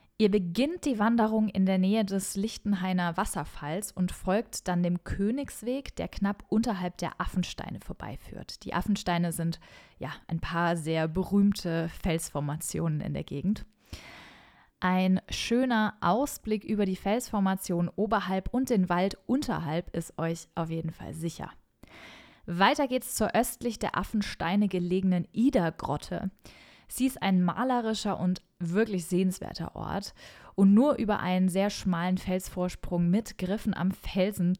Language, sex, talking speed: German, female, 135 wpm